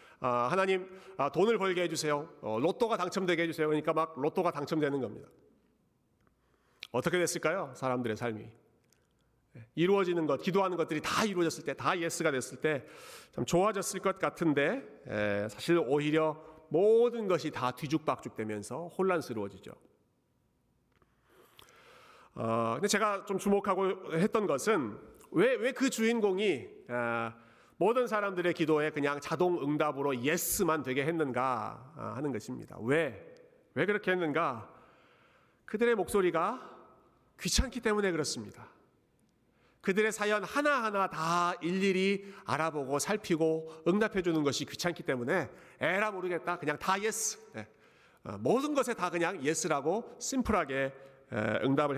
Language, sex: Korean, male